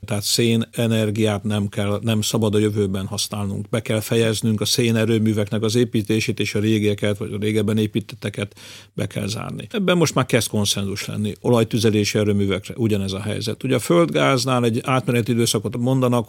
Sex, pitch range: male, 105-120 Hz